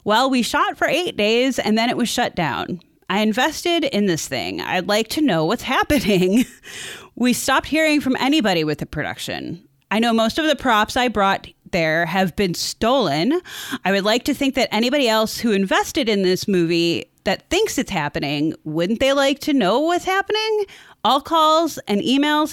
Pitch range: 195-305 Hz